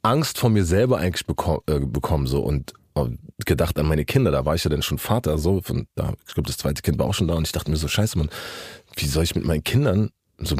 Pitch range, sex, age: 75-100 Hz, male, 30-49